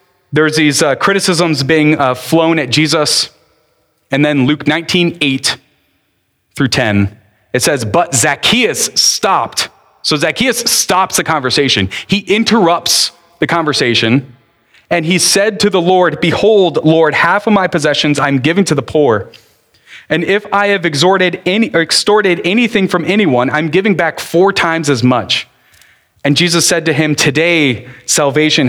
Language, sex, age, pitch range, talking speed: English, male, 30-49, 130-175 Hz, 150 wpm